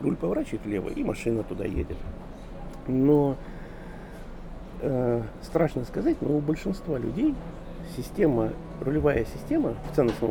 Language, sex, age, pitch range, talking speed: Russian, male, 50-69, 120-175 Hz, 115 wpm